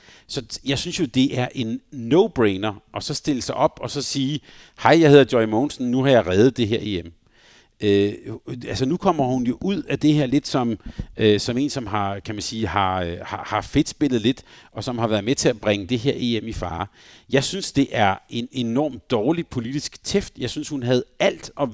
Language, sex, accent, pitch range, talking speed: Danish, male, native, 105-135 Hz, 225 wpm